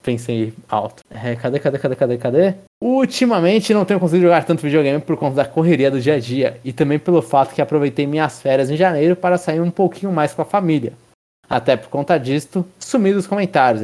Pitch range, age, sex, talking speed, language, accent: 145-185 Hz, 20-39, male, 210 wpm, Portuguese, Brazilian